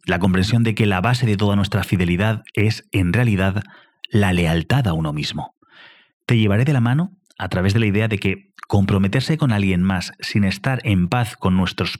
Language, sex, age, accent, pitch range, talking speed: English, male, 30-49, Spanish, 95-120 Hz, 200 wpm